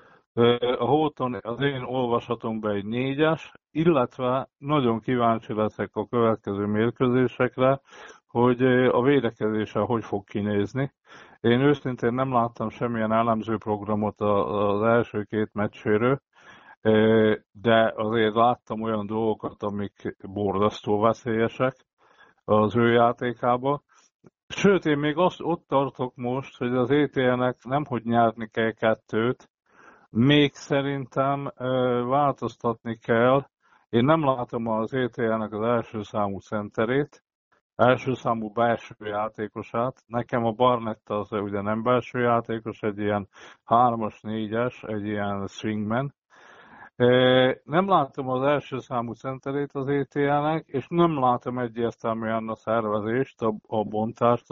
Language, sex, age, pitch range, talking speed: Hungarian, male, 50-69, 110-130 Hz, 120 wpm